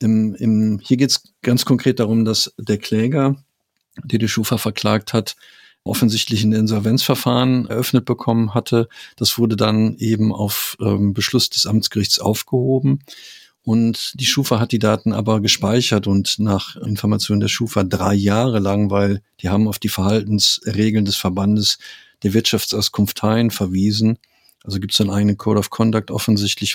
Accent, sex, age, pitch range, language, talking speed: German, male, 50-69, 100-115 Hz, German, 155 wpm